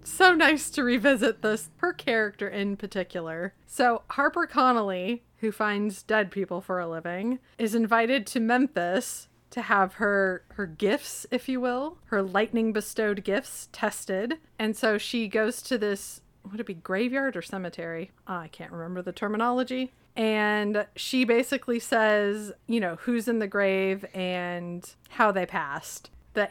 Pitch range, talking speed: 195-245 Hz, 155 wpm